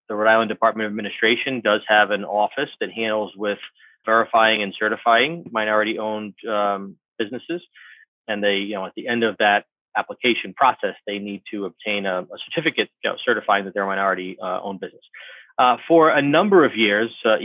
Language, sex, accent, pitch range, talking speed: English, male, American, 105-125 Hz, 190 wpm